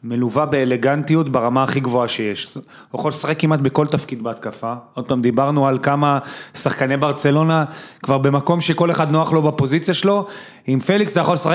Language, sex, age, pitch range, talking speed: English, male, 30-49, 135-170 Hz, 135 wpm